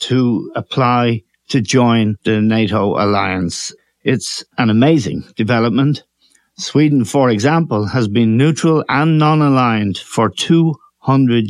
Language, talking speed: English, 110 wpm